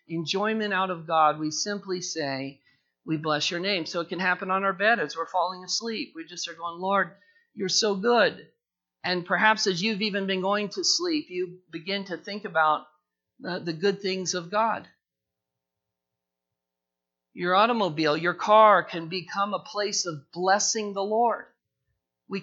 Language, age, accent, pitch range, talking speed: English, 50-69, American, 155-205 Hz, 165 wpm